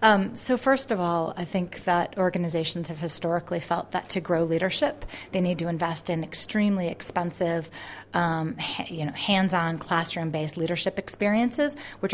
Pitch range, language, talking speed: 170-200 Hz, English, 160 wpm